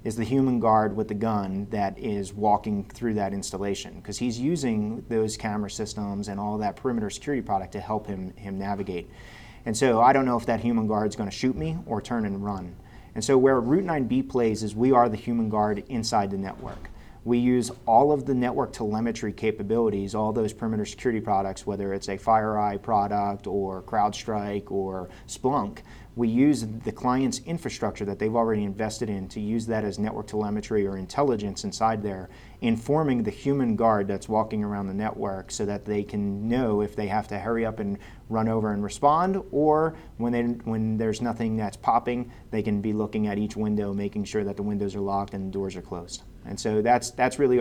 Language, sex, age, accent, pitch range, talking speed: English, male, 30-49, American, 100-120 Hz, 205 wpm